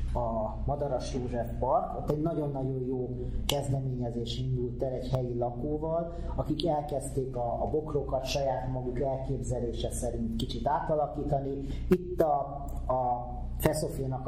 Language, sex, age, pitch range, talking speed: Hungarian, male, 30-49, 120-145 Hz, 120 wpm